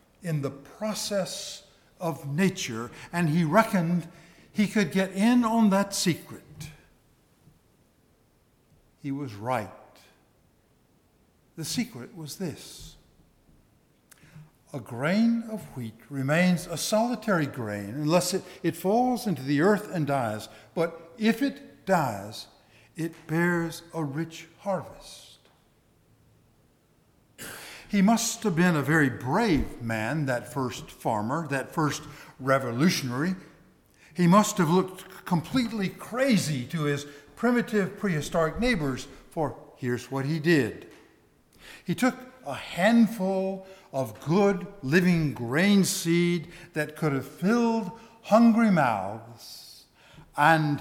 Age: 60-79